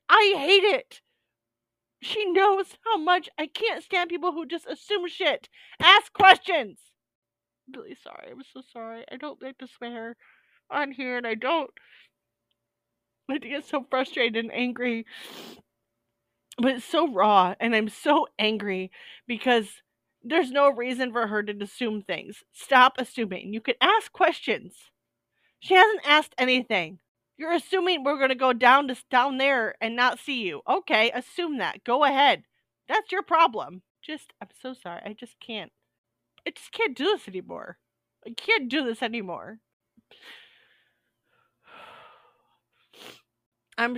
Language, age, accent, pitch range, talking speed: English, 30-49, American, 185-310 Hz, 145 wpm